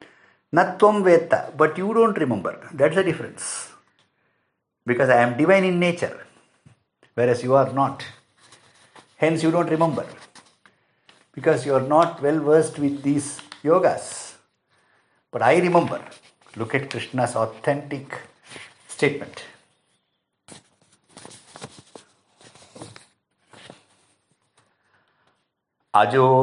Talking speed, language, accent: 95 wpm, English, Indian